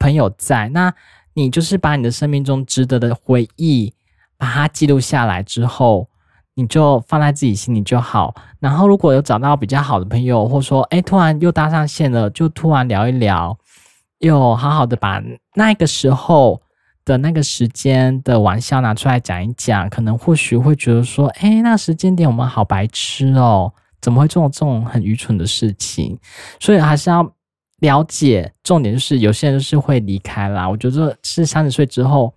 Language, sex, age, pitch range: Chinese, male, 20-39, 110-140 Hz